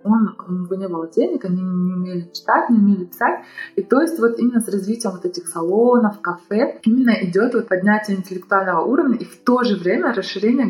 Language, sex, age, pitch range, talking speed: Russian, female, 20-39, 185-225 Hz, 190 wpm